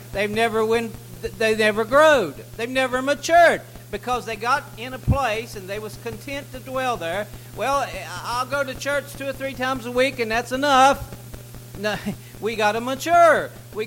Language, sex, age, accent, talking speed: English, male, 60-79, American, 175 wpm